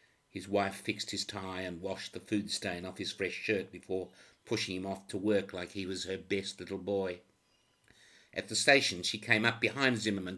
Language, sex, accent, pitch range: English, male, Australian, 90-105 Hz